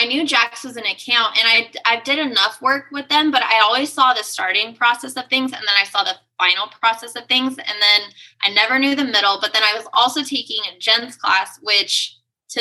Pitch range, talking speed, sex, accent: 195-235 Hz, 235 wpm, female, American